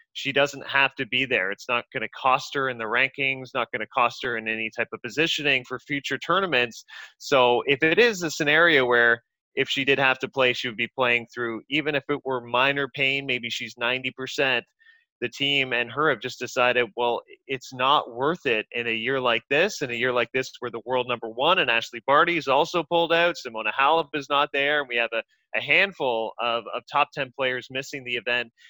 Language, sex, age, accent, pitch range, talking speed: English, male, 20-39, American, 120-145 Hz, 225 wpm